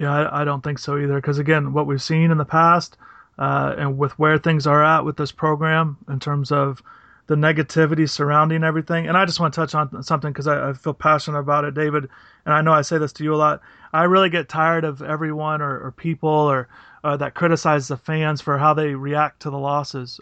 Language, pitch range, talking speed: English, 145-165 Hz, 235 wpm